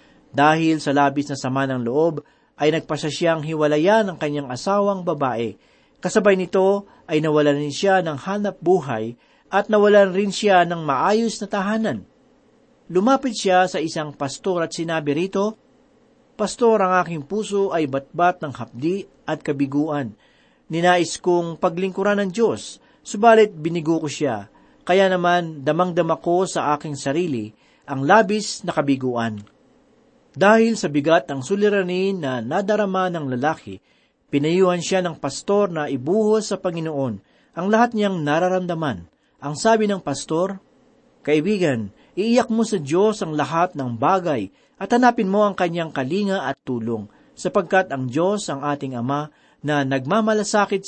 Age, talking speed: 40-59, 140 wpm